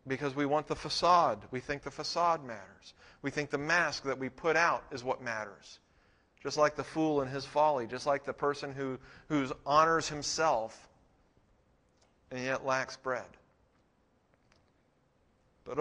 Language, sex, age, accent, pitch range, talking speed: English, male, 40-59, American, 115-145 Hz, 155 wpm